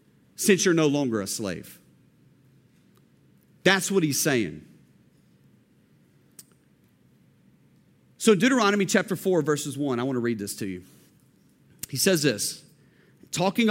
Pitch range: 145-220 Hz